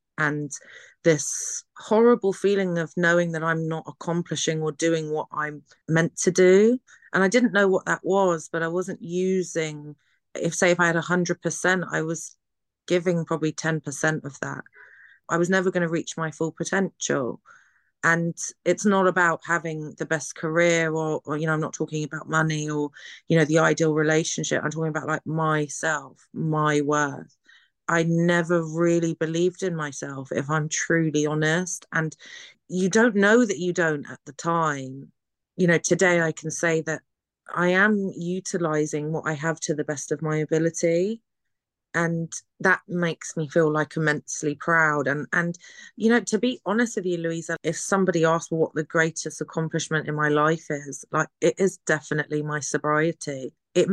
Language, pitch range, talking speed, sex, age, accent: English, 155-175 Hz, 170 wpm, female, 30-49, British